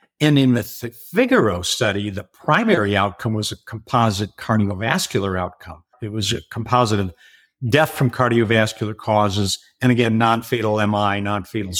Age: 60-79